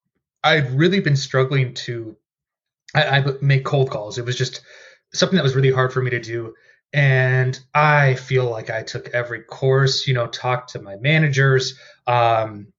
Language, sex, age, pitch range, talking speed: English, male, 20-39, 120-145 Hz, 165 wpm